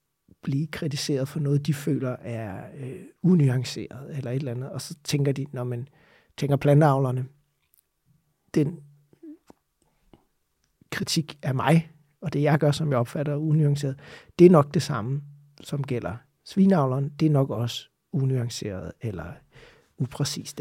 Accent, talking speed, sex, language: native, 140 wpm, male, Danish